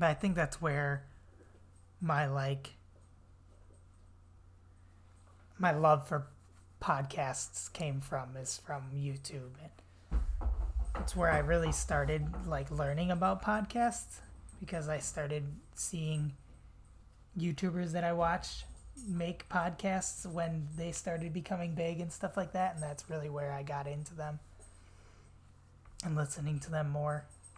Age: 20-39